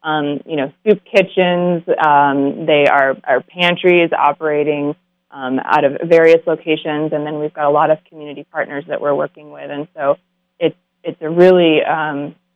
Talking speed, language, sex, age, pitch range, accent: 170 wpm, English, female, 20-39, 155-185 Hz, American